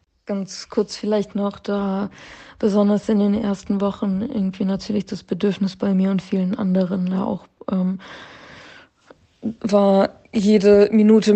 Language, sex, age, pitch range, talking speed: German, female, 20-39, 185-200 Hz, 125 wpm